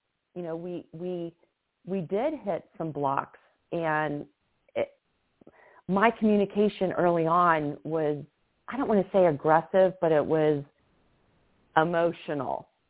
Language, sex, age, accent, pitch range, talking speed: English, female, 40-59, American, 150-185 Hz, 120 wpm